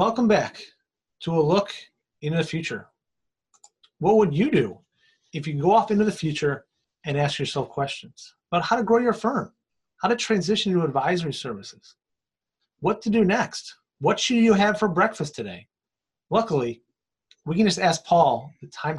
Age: 30-49